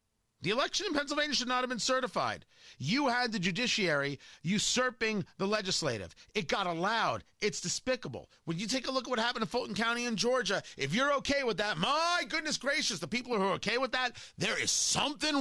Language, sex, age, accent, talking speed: English, male, 40-59, American, 205 wpm